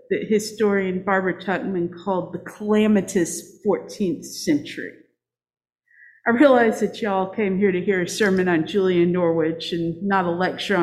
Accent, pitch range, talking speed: American, 175-225 Hz, 145 wpm